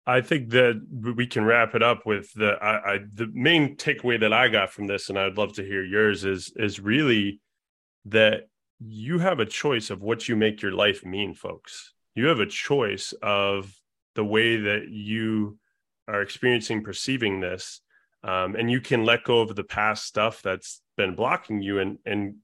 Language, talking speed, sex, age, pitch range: English, 190 wpm, male, 30-49, 100-115 Hz